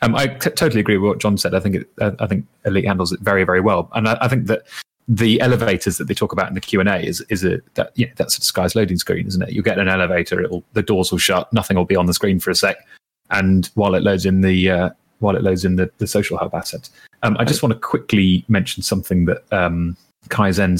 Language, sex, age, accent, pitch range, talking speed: English, male, 30-49, British, 95-110 Hz, 265 wpm